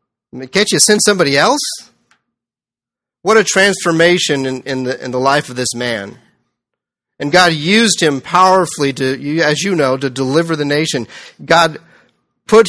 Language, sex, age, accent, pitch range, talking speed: English, male, 40-59, American, 135-175 Hz, 160 wpm